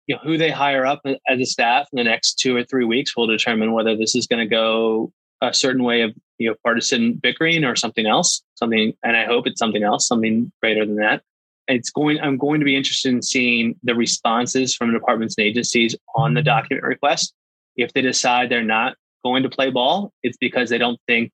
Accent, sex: American, male